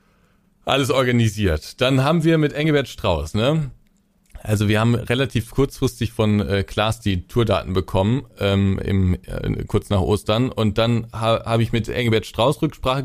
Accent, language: German, German